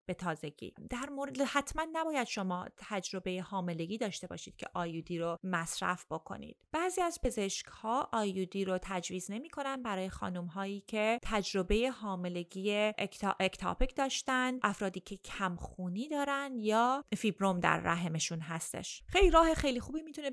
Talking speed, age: 140 wpm, 30-49